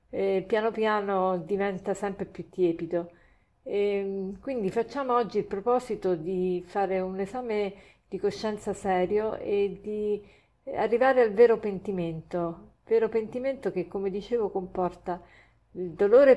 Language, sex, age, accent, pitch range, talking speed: Italian, female, 50-69, native, 180-210 Hz, 120 wpm